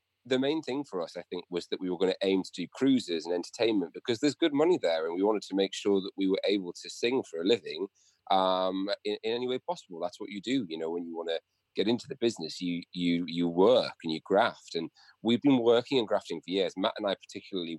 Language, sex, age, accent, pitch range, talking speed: English, male, 30-49, British, 85-115 Hz, 265 wpm